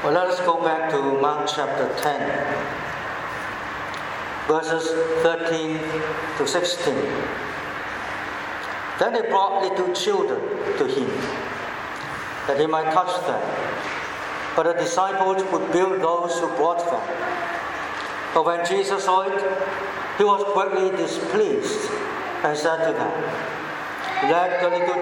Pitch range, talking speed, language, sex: 160-190 Hz, 120 wpm, English, male